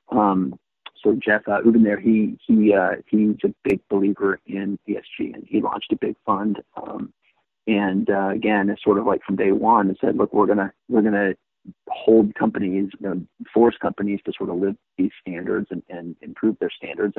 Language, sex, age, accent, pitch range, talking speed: English, male, 40-59, American, 100-110 Hz, 190 wpm